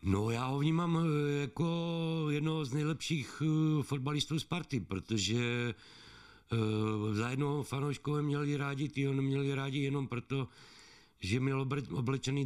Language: Czech